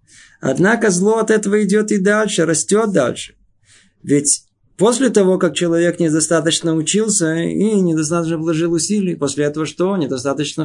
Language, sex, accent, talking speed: Russian, male, native, 135 wpm